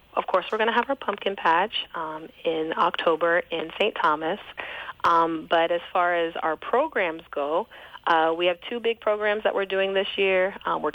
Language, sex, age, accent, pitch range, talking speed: English, female, 30-49, American, 160-205 Hz, 195 wpm